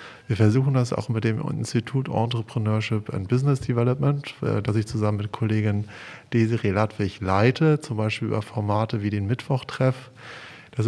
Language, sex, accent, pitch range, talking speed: German, male, German, 105-130 Hz, 150 wpm